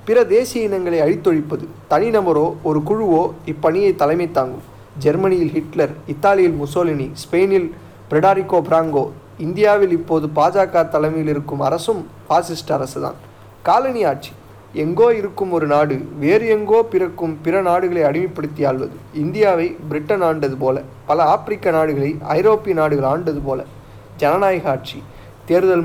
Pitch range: 145-180 Hz